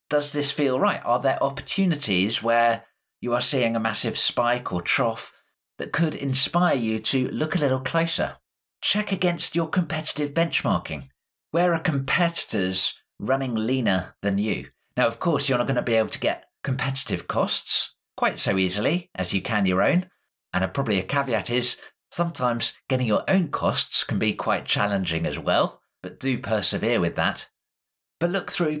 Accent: British